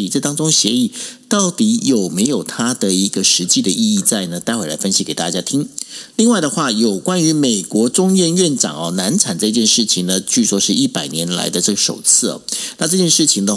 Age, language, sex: 50-69, Chinese, male